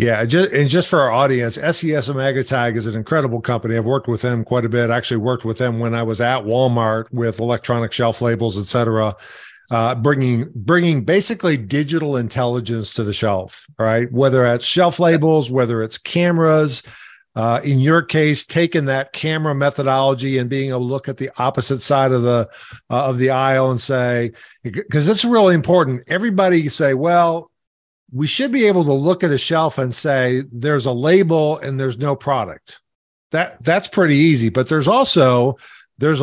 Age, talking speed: 50-69, 185 wpm